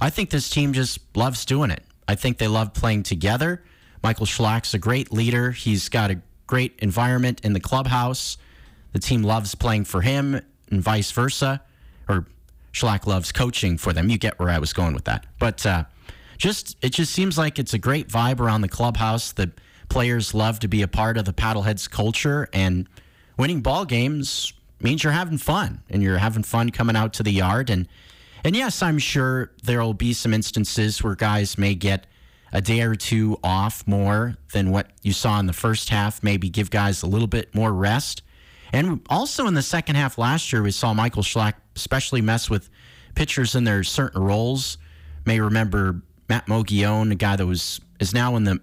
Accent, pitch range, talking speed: American, 95-120 Hz, 195 wpm